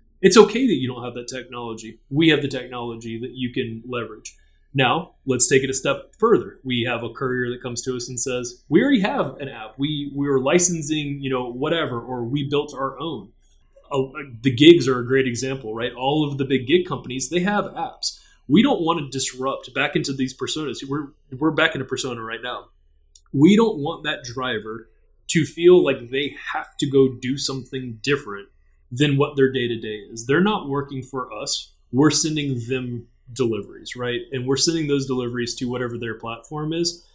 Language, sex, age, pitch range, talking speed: English, male, 20-39, 125-150 Hz, 200 wpm